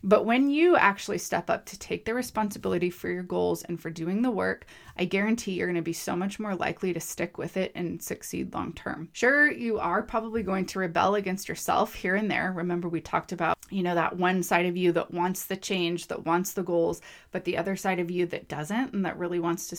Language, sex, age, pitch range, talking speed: English, female, 20-39, 175-220 Hz, 245 wpm